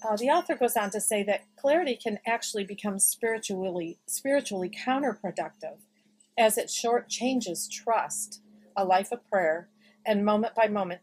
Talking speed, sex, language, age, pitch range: 140 wpm, female, English, 40-59, 185-235 Hz